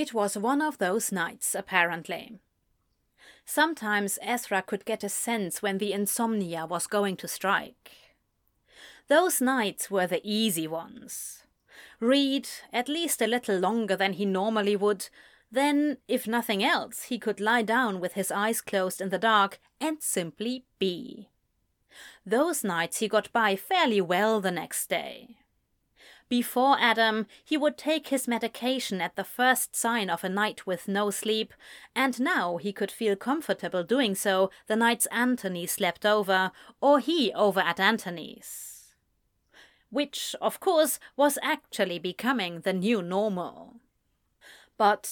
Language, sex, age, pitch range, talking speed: English, female, 30-49, 195-255 Hz, 145 wpm